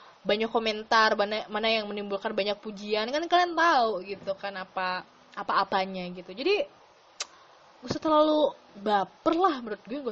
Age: 20-39